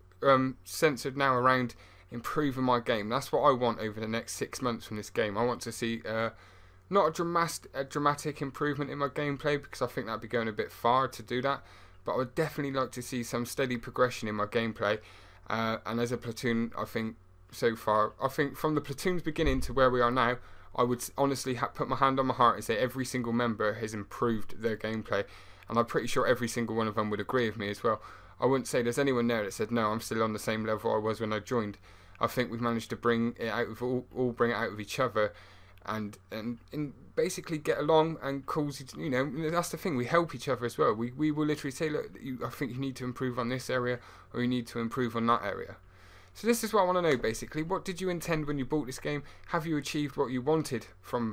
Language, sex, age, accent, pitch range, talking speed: English, male, 20-39, British, 110-140 Hz, 250 wpm